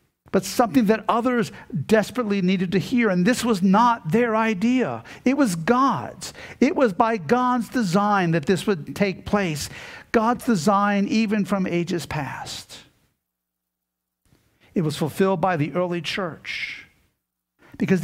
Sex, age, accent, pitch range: male, 50-69, American, 140-200 Hz